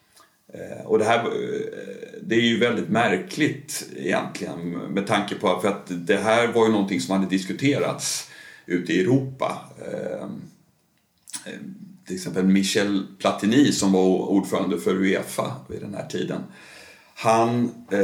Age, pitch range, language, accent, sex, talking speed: 50-69, 95-130 Hz, Swedish, native, male, 135 wpm